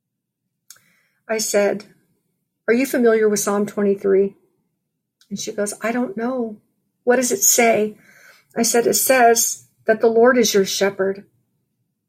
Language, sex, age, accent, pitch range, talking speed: English, female, 50-69, American, 200-235 Hz, 140 wpm